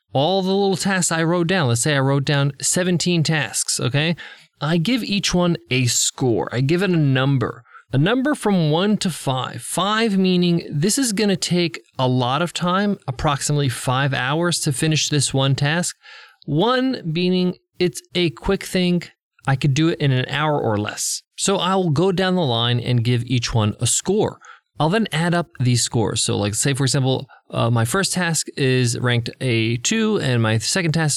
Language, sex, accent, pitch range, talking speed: English, male, American, 135-185 Hz, 195 wpm